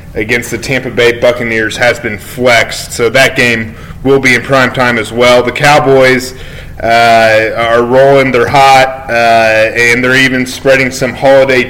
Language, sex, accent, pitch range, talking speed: English, male, American, 115-130 Hz, 165 wpm